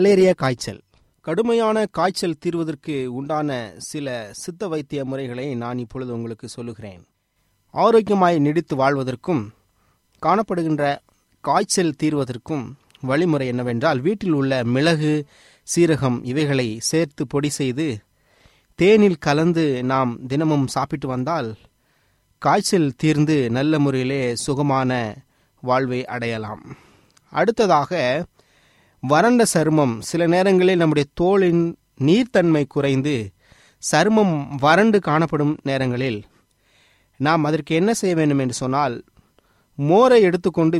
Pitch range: 130-165 Hz